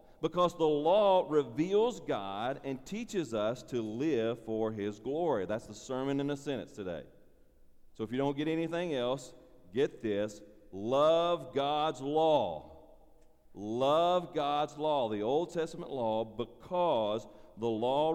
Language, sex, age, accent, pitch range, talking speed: English, male, 40-59, American, 110-155 Hz, 140 wpm